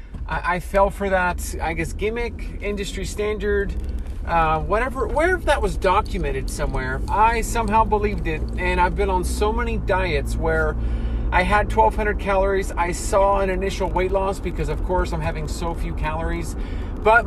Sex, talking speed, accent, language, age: male, 165 wpm, American, English, 30-49